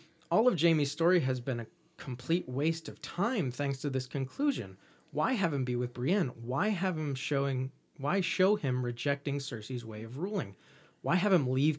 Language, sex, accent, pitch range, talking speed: English, male, American, 130-175 Hz, 190 wpm